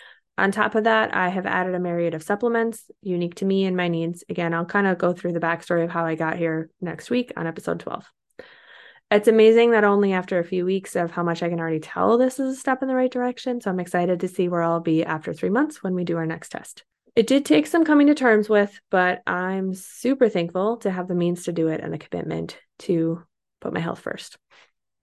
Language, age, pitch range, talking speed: English, 20-39, 175-220 Hz, 245 wpm